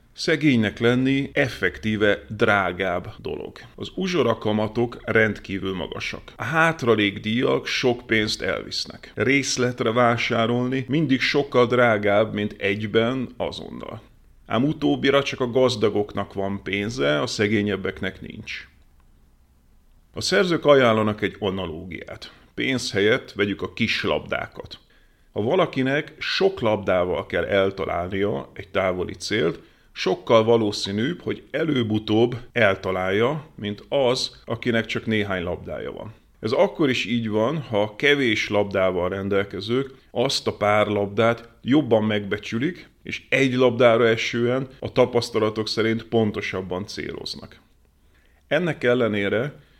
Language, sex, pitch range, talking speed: Hungarian, male, 100-125 Hz, 105 wpm